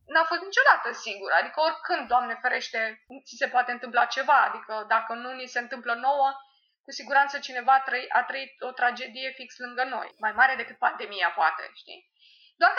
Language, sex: Romanian, female